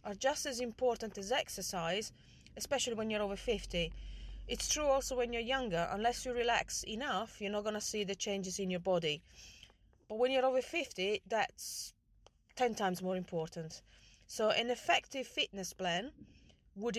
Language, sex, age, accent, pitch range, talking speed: English, female, 30-49, British, 185-235 Hz, 165 wpm